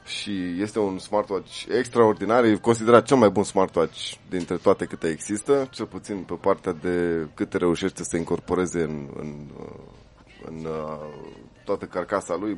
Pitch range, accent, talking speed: 95-125 Hz, native, 140 wpm